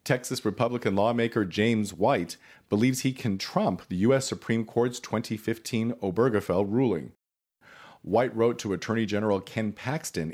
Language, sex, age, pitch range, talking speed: English, male, 40-59, 100-130 Hz, 135 wpm